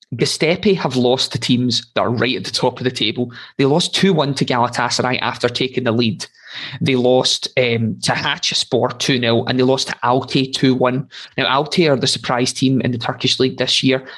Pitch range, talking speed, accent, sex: 120-135 Hz, 200 wpm, British, male